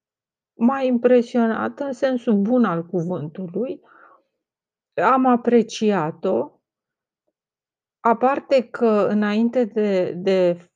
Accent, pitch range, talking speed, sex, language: native, 180-225 Hz, 80 wpm, female, Romanian